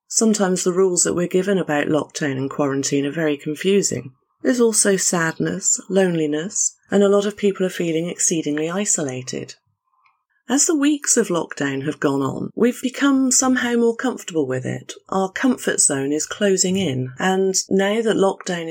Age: 30-49